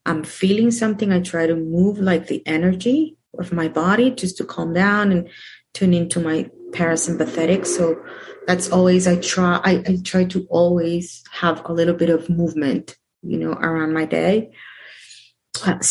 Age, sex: 30-49, female